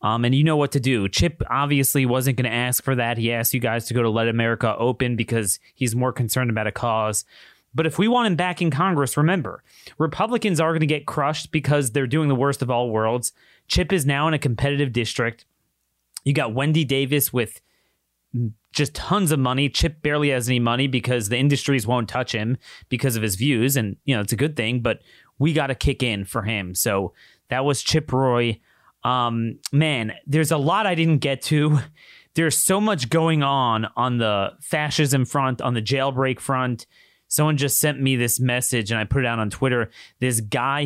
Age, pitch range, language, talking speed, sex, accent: 30-49, 115-145 Hz, English, 210 wpm, male, American